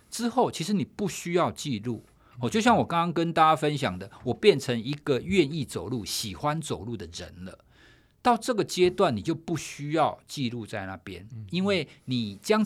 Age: 50-69